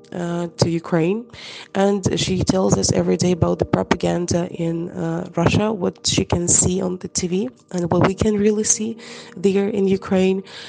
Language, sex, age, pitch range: English, female, 20-39, 175-200 Hz